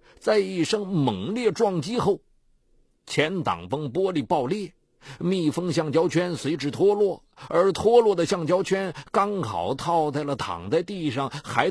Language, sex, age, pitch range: Chinese, male, 50-69, 135-200 Hz